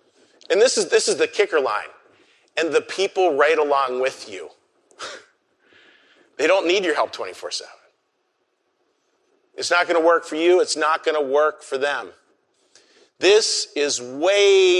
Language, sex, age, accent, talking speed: English, male, 40-59, American, 155 wpm